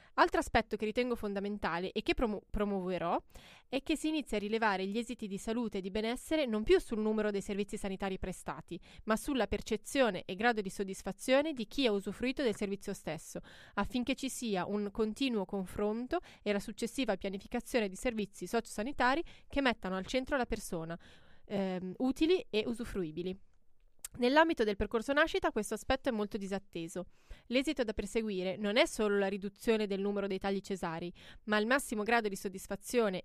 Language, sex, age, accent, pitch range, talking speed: Italian, female, 20-39, native, 195-245 Hz, 170 wpm